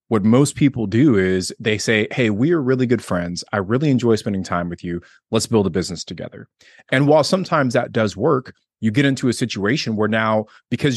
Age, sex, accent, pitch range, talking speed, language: 30-49, male, American, 100-125 Hz, 215 wpm, English